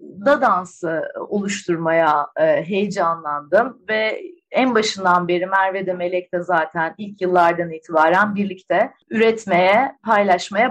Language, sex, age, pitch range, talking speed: Turkish, female, 30-49, 190-250 Hz, 105 wpm